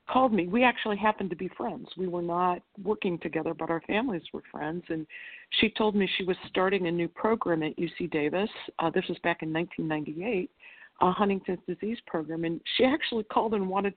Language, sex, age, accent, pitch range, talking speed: English, female, 50-69, American, 160-205 Hz, 200 wpm